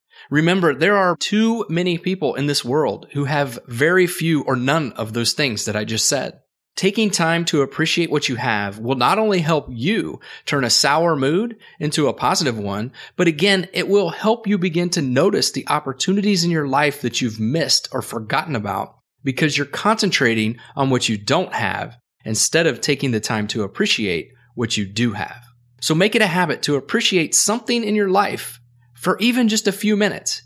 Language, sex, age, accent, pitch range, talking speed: English, male, 30-49, American, 120-190 Hz, 195 wpm